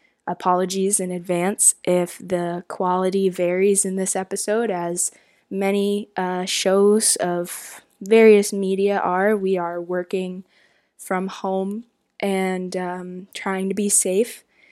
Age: 10-29